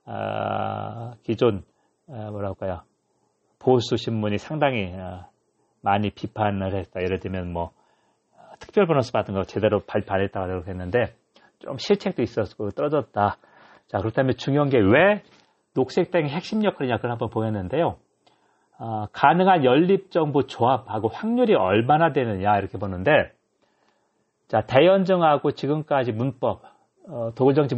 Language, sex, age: Korean, male, 40-59